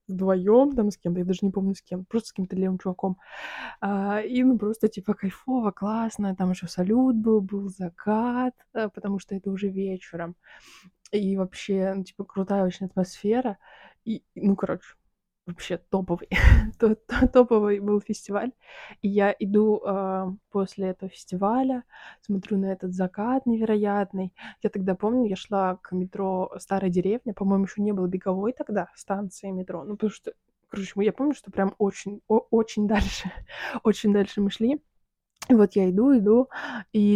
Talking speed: 160 wpm